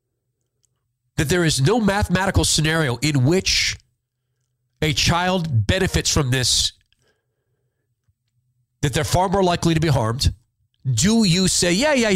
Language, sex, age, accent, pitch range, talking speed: English, male, 40-59, American, 120-160 Hz, 130 wpm